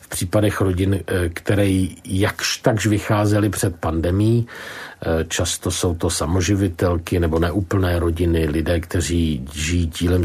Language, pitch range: Czech, 85-105 Hz